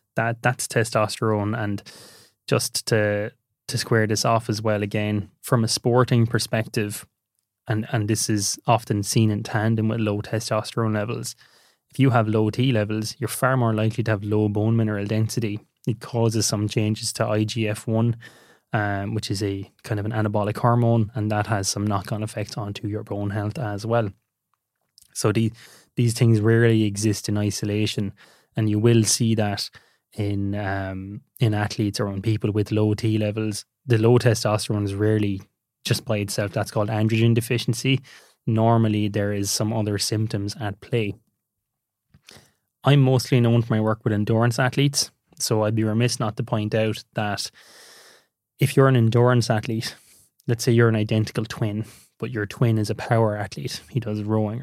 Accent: Irish